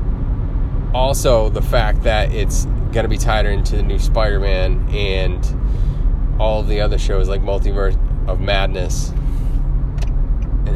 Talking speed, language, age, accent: 130 wpm, English, 30-49, American